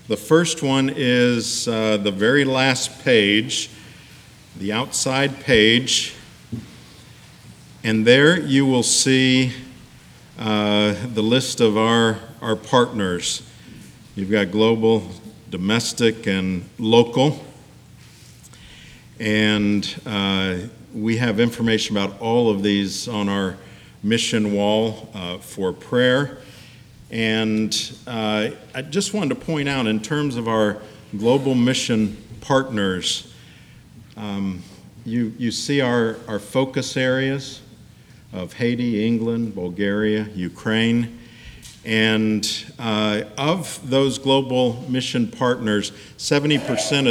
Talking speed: 105 wpm